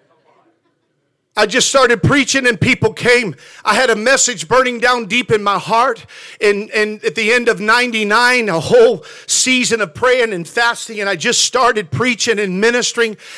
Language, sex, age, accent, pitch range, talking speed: English, male, 50-69, American, 225-270 Hz, 170 wpm